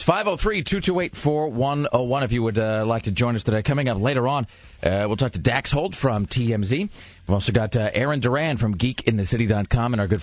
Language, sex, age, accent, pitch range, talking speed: English, male, 30-49, American, 100-135 Hz, 195 wpm